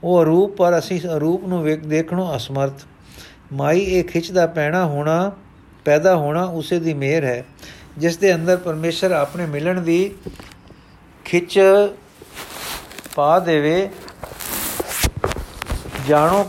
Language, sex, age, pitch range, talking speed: Punjabi, male, 60-79, 140-180 Hz, 100 wpm